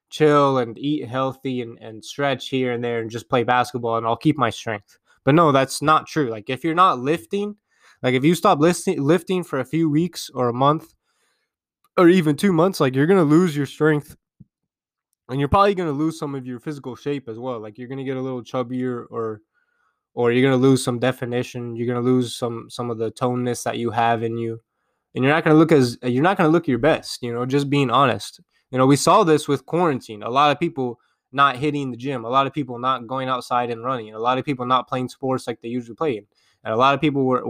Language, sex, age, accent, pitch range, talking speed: English, male, 20-39, American, 120-150 Hz, 240 wpm